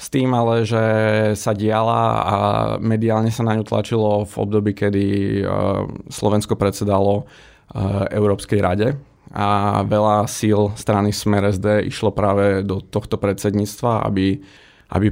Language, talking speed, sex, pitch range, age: Slovak, 125 wpm, male, 100-110 Hz, 20-39